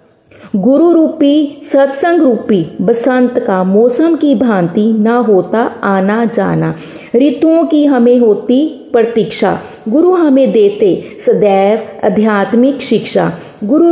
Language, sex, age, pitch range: Hindi, female, 30-49, 210-280 Hz